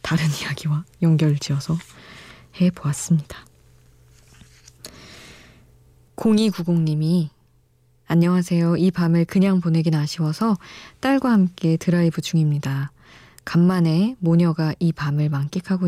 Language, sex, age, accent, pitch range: Korean, female, 20-39, native, 145-180 Hz